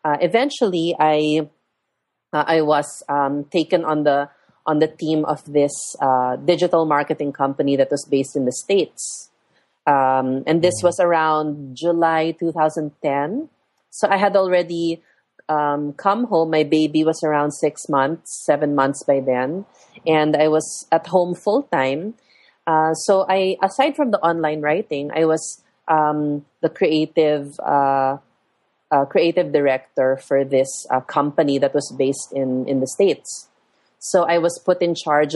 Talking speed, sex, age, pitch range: 155 wpm, female, 30-49, 140-165 Hz